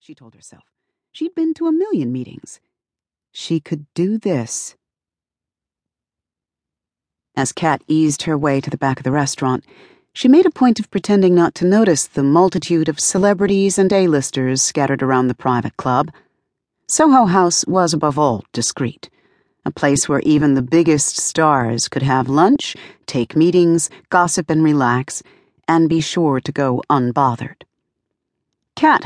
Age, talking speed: 40-59, 150 wpm